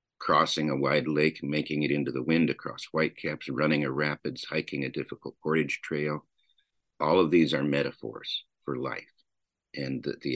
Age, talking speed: 50-69, 170 wpm